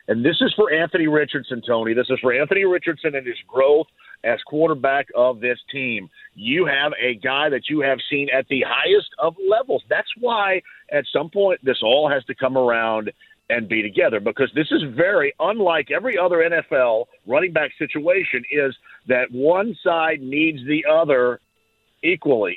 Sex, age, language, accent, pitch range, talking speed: male, 50-69, English, American, 130-195 Hz, 175 wpm